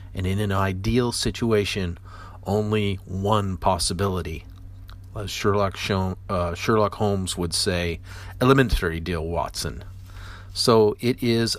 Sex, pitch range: male, 95-110 Hz